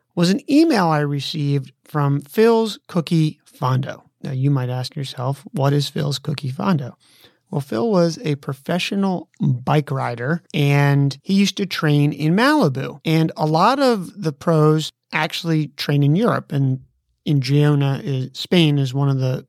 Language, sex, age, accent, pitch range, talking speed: English, male, 30-49, American, 140-180 Hz, 160 wpm